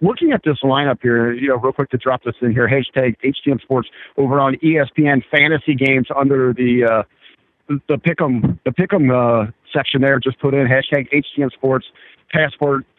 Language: English